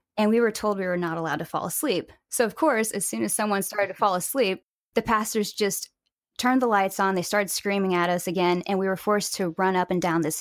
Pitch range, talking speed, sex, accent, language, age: 175-220 Hz, 260 wpm, female, American, English, 10-29